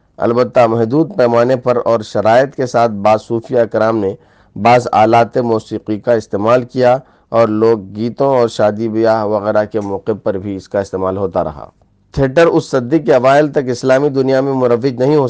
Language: English